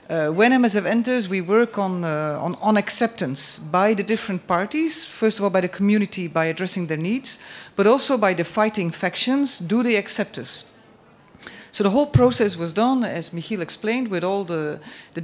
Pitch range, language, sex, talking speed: 175-235 Hz, English, female, 190 wpm